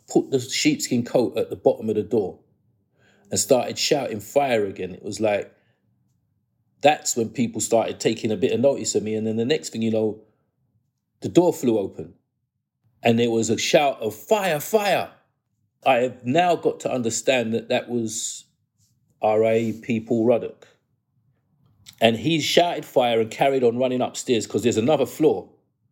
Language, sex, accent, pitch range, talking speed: English, male, British, 110-125 Hz, 170 wpm